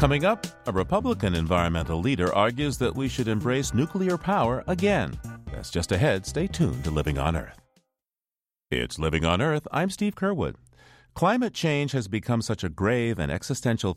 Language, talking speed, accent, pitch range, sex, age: English, 170 wpm, American, 95-150 Hz, male, 40-59